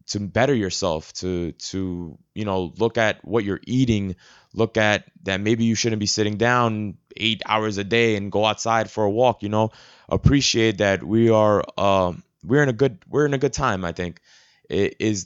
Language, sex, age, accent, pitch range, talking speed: English, male, 20-39, American, 100-115 Hz, 200 wpm